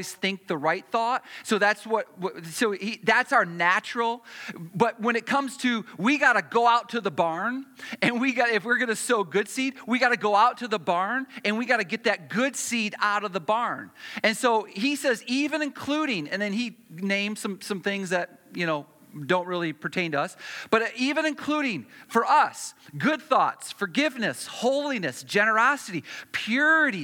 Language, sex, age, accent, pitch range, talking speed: English, male, 40-59, American, 190-255 Hz, 195 wpm